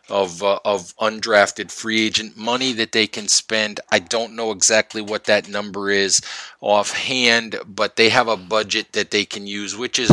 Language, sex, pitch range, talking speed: English, male, 105-125 Hz, 185 wpm